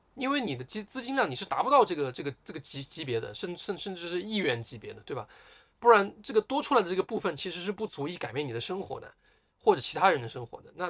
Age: 20-39